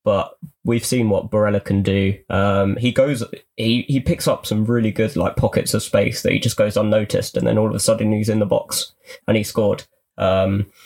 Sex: male